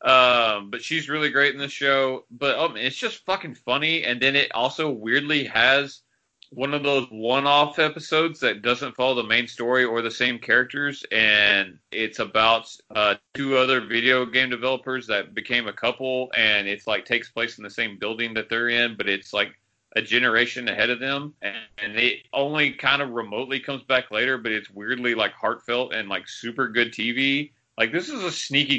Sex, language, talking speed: male, English, 195 wpm